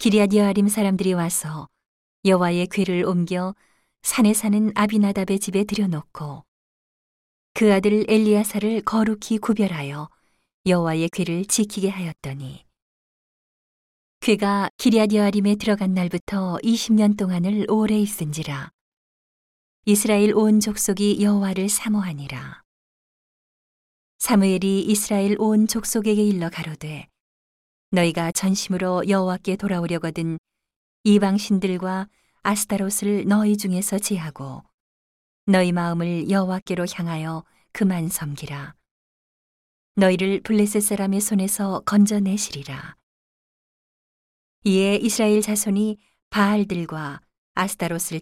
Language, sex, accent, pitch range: Korean, female, native, 170-210 Hz